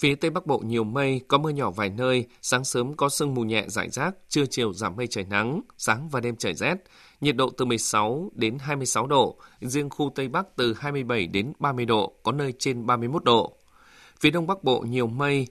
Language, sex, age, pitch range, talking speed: Vietnamese, male, 20-39, 115-140 Hz, 220 wpm